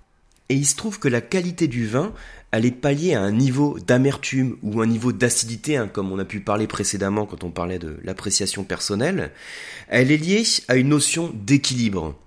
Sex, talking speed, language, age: male, 195 wpm, French, 30-49